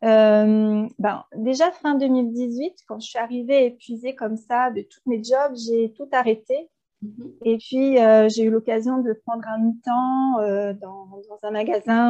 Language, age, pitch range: French, 30-49, 220-260 Hz